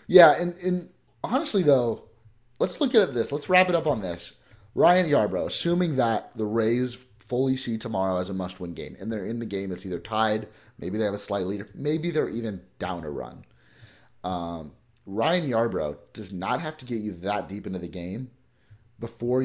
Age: 30-49